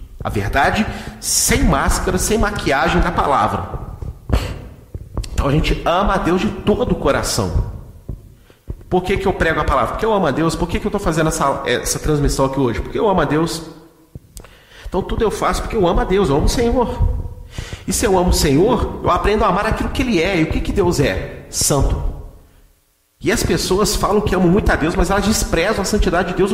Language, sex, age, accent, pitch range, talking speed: Portuguese, male, 40-59, Brazilian, 125-185 Hz, 215 wpm